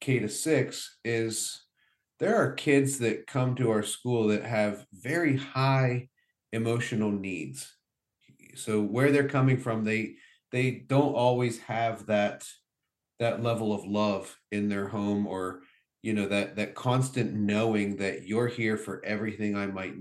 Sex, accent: male, American